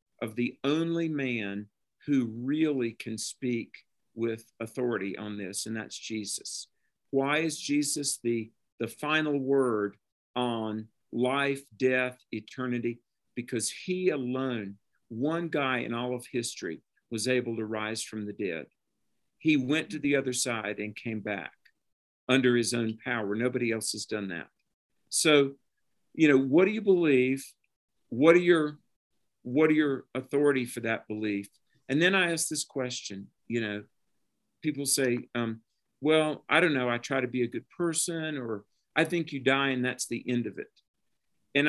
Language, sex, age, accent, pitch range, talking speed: English, male, 50-69, American, 115-145 Hz, 160 wpm